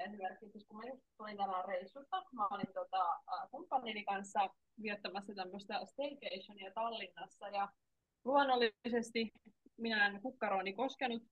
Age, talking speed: 20-39, 80 wpm